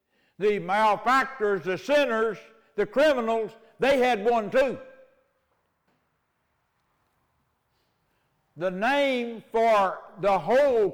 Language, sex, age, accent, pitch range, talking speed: English, male, 60-79, American, 205-255 Hz, 80 wpm